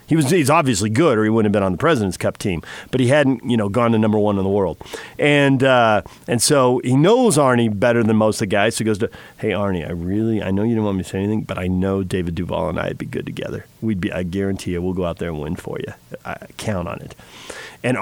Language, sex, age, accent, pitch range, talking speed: English, male, 40-59, American, 105-140 Hz, 275 wpm